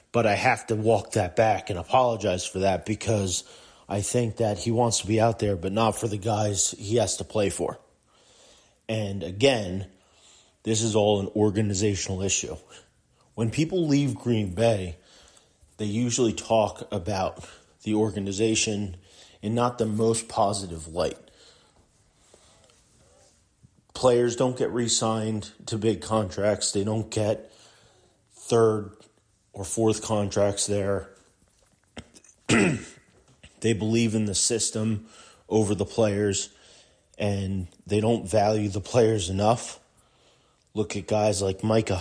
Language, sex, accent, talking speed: English, male, American, 130 wpm